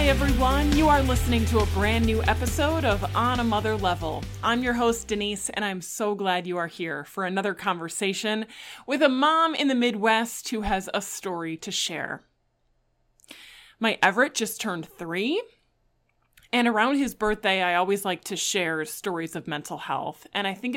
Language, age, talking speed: English, 20-39, 180 wpm